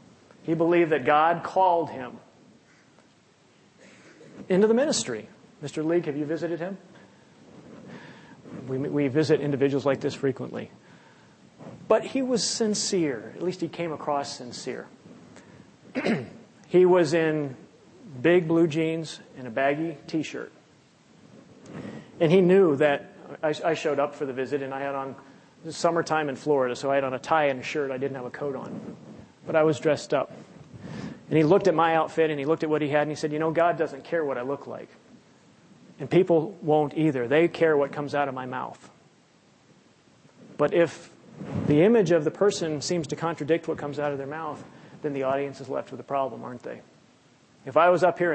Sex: male